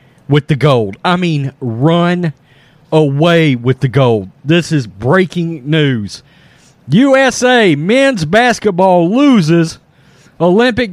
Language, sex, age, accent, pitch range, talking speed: English, male, 40-59, American, 170-270 Hz, 105 wpm